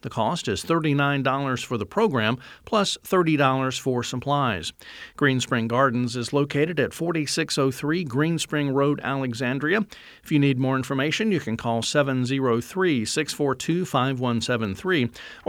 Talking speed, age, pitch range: 115 wpm, 50-69, 125-165 Hz